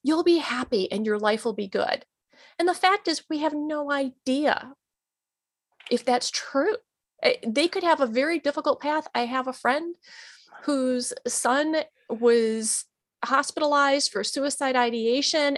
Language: English